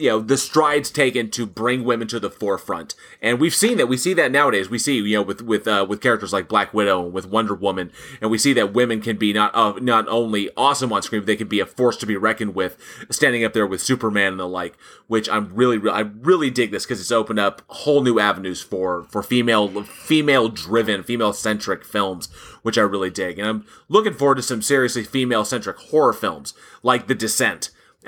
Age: 30-49